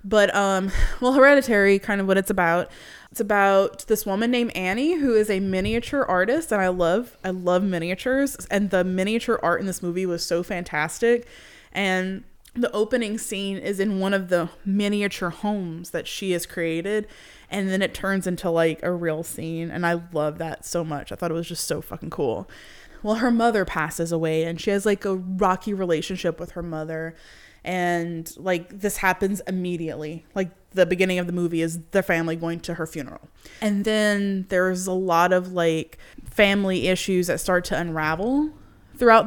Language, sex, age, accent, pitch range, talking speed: English, female, 20-39, American, 175-205 Hz, 185 wpm